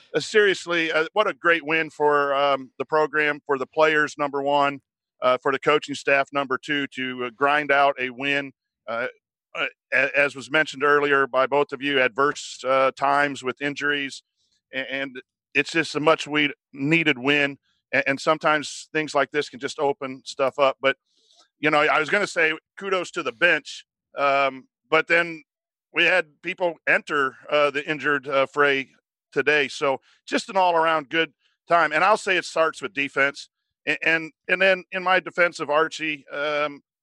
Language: English